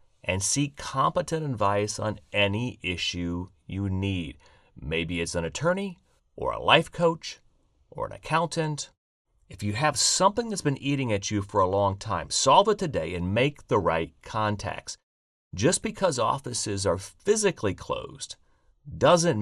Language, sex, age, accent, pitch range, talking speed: English, male, 40-59, American, 90-135 Hz, 150 wpm